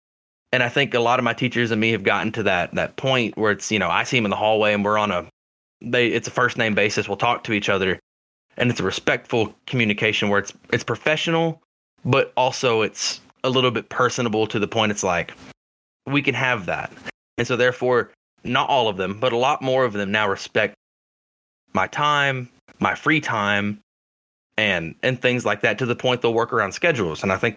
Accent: American